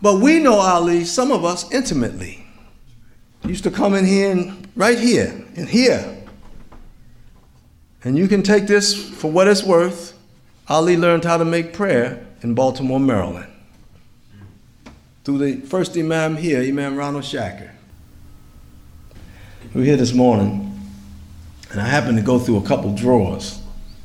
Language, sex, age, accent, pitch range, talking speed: English, male, 50-69, American, 95-130 Hz, 145 wpm